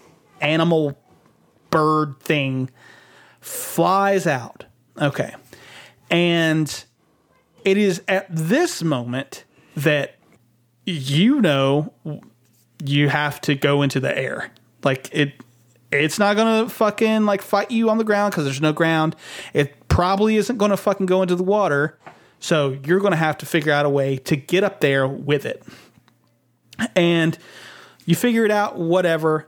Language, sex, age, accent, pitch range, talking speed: English, male, 30-49, American, 145-195 Hz, 145 wpm